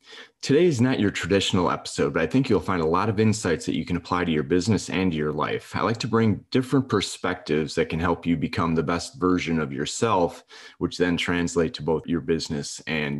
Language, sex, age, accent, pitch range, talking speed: English, male, 30-49, American, 80-100 Hz, 225 wpm